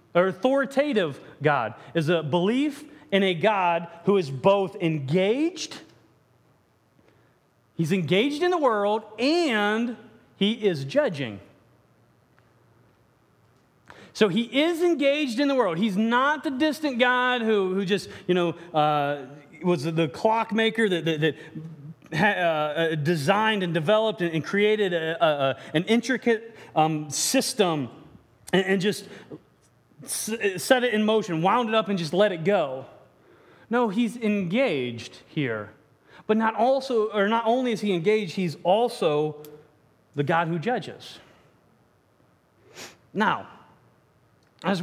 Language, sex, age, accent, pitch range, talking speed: English, male, 30-49, American, 155-230 Hz, 125 wpm